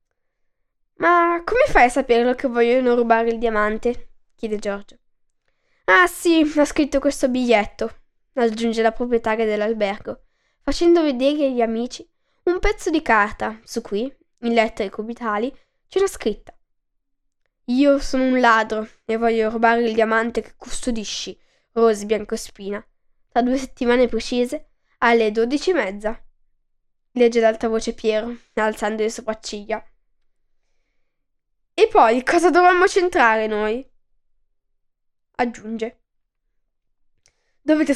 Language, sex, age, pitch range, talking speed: Italian, female, 10-29, 225-285 Hz, 115 wpm